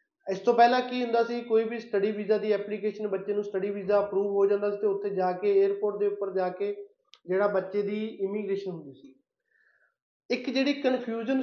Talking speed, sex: 200 wpm, male